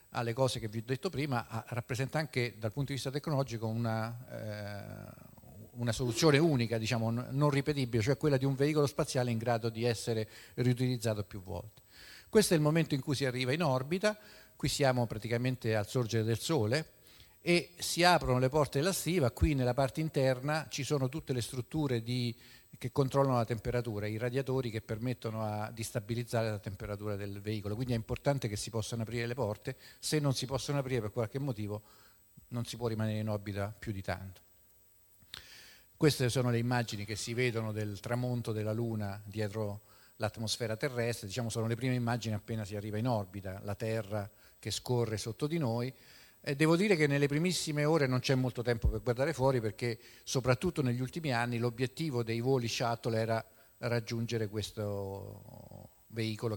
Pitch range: 110-135 Hz